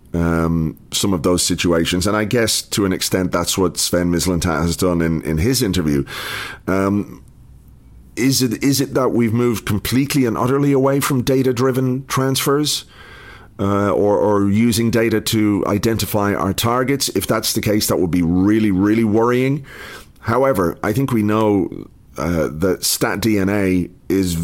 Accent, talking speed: British, 155 wpm